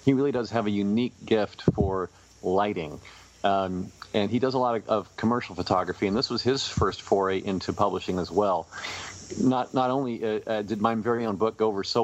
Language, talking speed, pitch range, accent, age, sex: English, 210 wpm, 95-115 Hz, American, 40-59, male